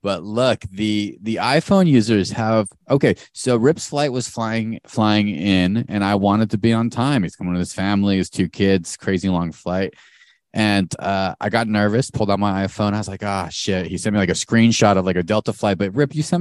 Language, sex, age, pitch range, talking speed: English, male, 30-49, 100-120 Hz, 230 wpm